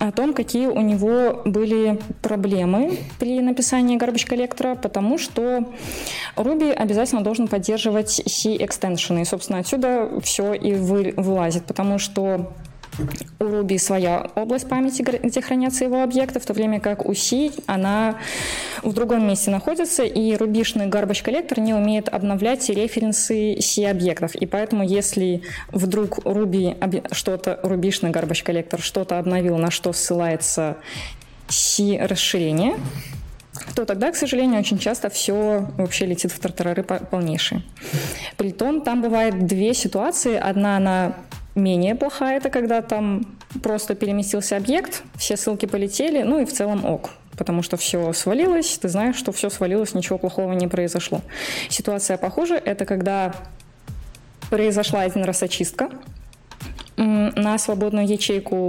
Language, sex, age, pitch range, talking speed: Russian, female, 20-39, 190-230 Hz, 130 wpm